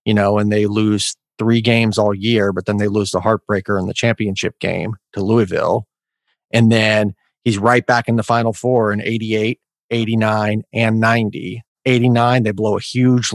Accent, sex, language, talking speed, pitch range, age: American, male, English, 180 wpm, 105-120 Hz, 30-49